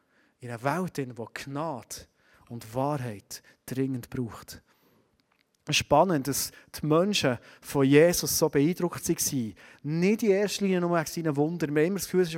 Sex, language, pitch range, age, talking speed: male, German, 145-200 Hz, 30-49, 150 wpm